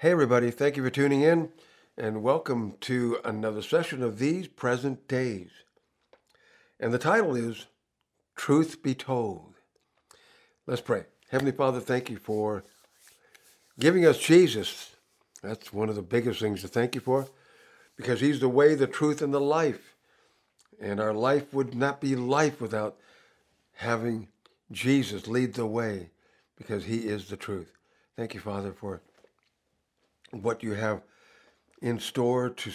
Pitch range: 105-130 Hz